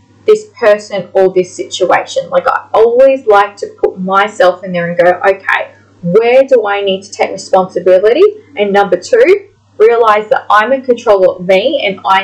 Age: 20-39